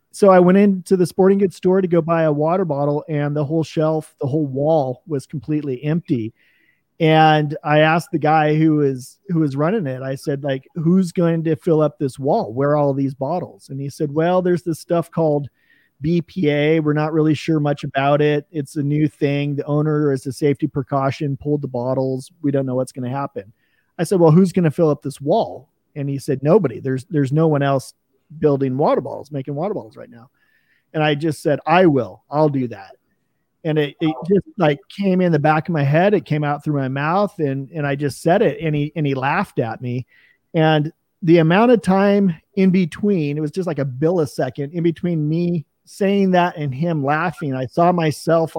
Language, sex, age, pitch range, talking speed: English, male, 40-59, 140-165 Hz, 220 wpm